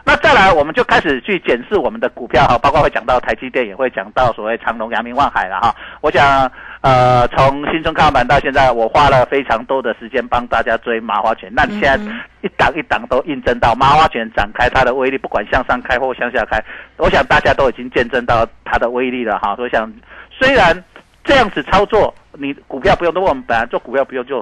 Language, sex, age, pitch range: Chinese, male, 50-69, 130-215 Hz